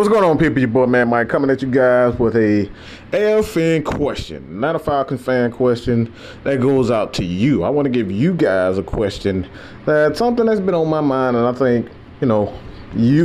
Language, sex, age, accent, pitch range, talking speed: English, male, 30-49, American, 110-145 Hz, 215 wpm